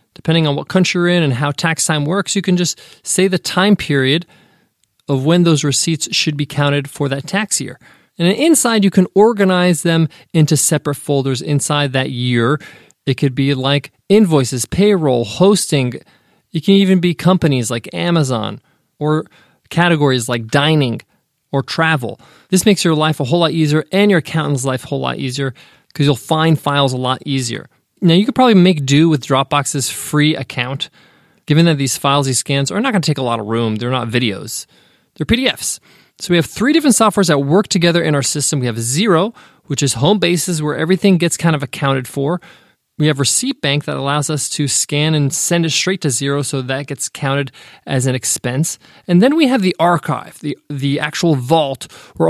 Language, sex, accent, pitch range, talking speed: English, male, American, 140-175 Hz, 200 wpm